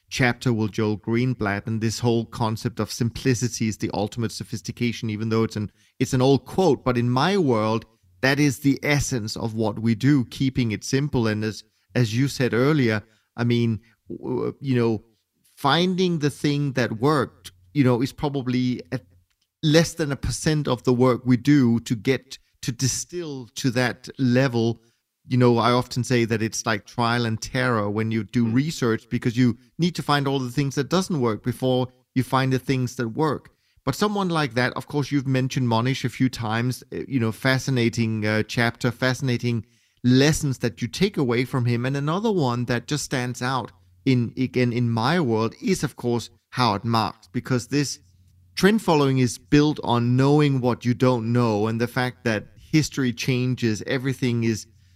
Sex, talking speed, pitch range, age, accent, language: male, 180 wpm, 115-135 Hz, 30-49, German, English